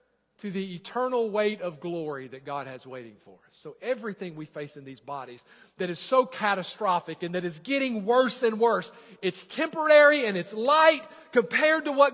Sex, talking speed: male, 190 wpm